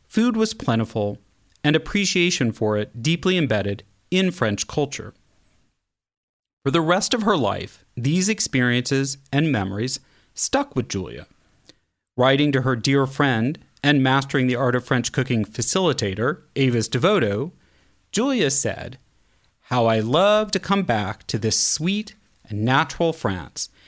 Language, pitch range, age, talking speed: English, 115-175 Hz, 40-59, 135 wpm